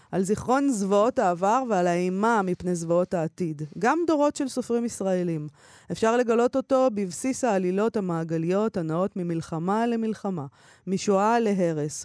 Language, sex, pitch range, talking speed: Hebrew, female, 170-225 Hz, 125 wpm